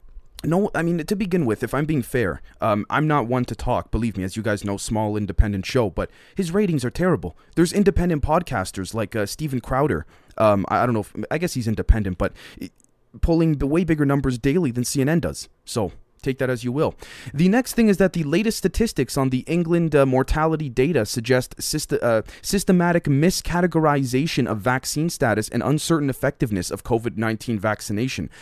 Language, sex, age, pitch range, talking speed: English, male, 20-39, 110-145 Hz, 190 wpm